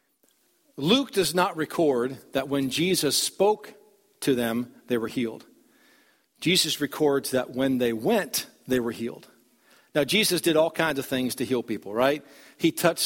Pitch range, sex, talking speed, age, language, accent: 140-185 Hz, male, 160 wpm, 50-69, English, American